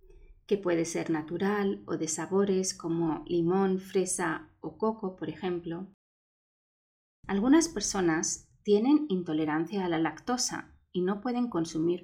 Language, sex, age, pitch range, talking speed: Spanish, female, 30-49, 160-200 Hz, 125 wpm